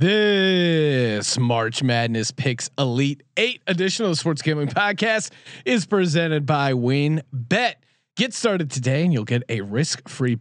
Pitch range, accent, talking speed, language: 135-185 Hz, American, 150 wpm, English